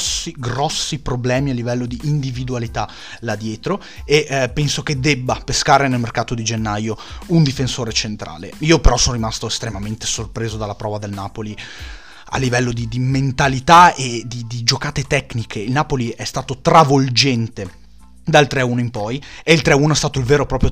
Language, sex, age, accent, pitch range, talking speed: Italian, male, 30-49, native, 115-145 Hz, 170 wpm